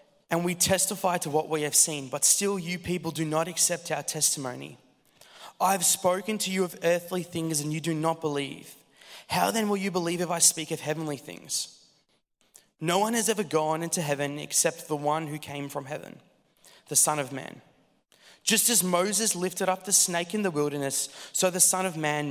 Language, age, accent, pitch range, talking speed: English, 20-39, Australian, 150-190 Hz, 195 wpm